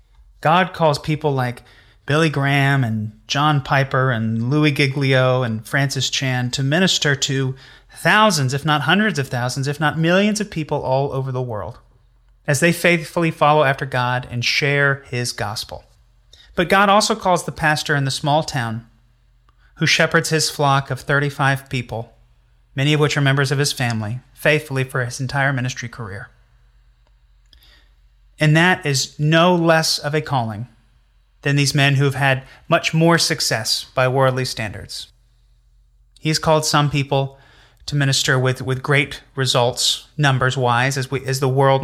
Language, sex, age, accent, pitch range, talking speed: English, male, 30-49, American, 125-150 Hz, 160 wpm